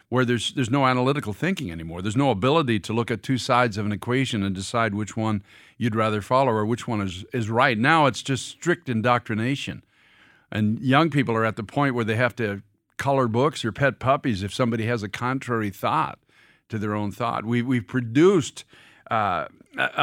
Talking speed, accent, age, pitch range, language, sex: 200 wpm, American, 50-69, 110-140 Hz, English, male